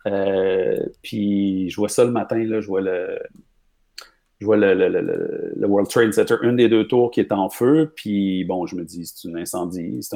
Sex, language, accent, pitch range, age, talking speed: male, French, Canadian, 95-120 Hz, 40-59, 220 wpm